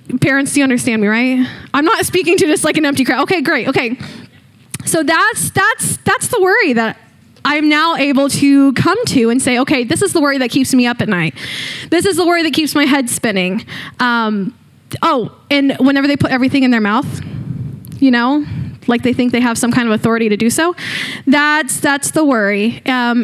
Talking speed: 210 wpm